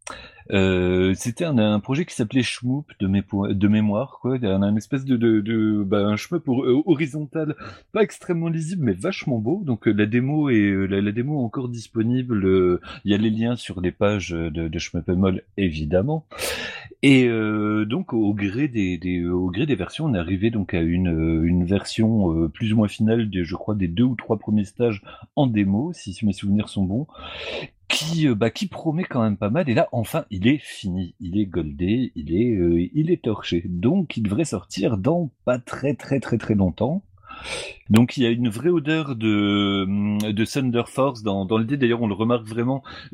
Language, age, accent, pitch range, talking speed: French, 40-59, French, 100-135 Hz, 200 wpm